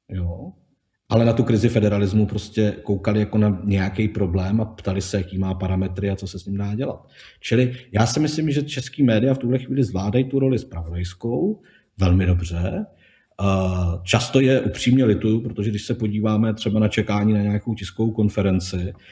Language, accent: Czech, native